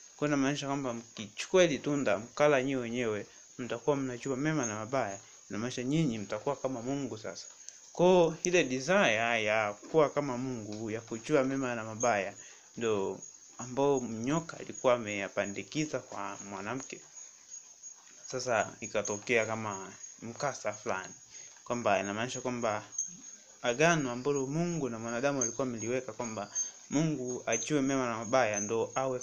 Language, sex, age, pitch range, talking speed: Swahili, male, 20-39, 110-135 Hz, 130 wpm